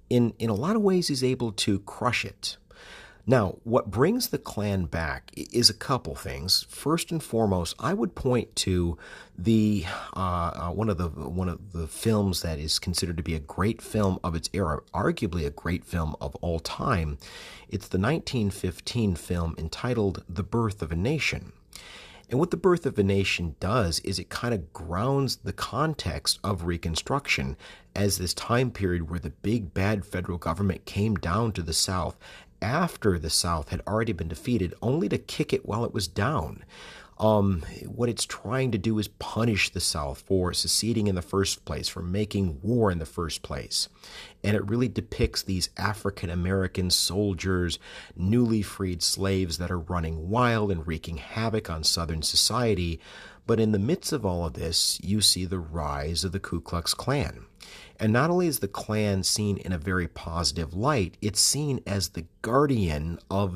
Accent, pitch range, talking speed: American, 85-110 Hz, 180 wpm